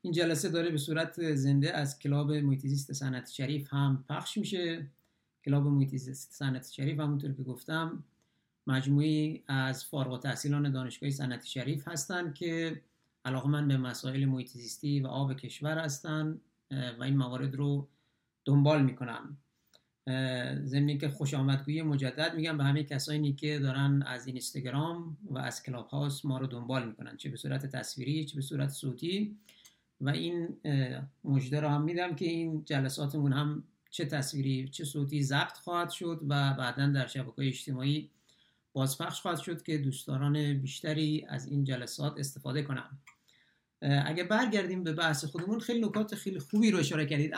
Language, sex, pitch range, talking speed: Persian, male, 135-160 Hz, 150 wpm